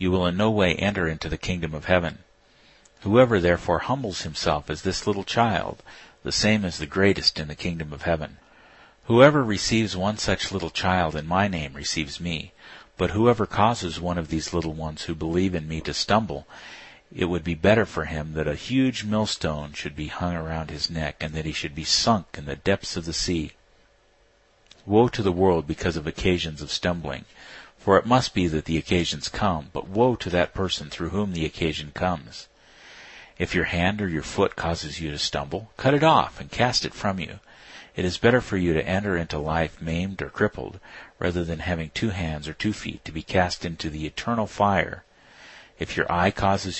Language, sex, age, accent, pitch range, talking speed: English, male, 50-69, American, 80-100 Hz, 205 wpm